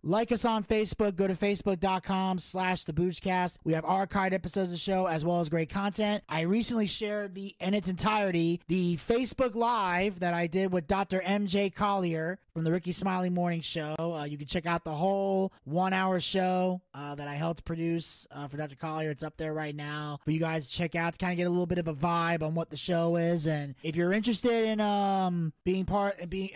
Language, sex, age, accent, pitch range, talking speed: English, male, 20-39, American, 170-205 Hz, 215 wpm